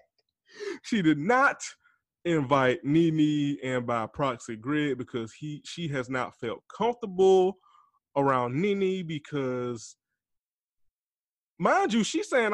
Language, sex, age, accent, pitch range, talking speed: English, male, 20-39, American, 145-240 Hz, 110 wpm